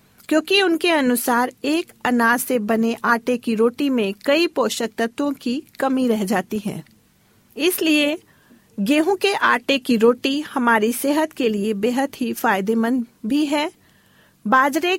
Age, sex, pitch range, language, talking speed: 40-59, female, 230-290 Hz, Hindi, 140 wpm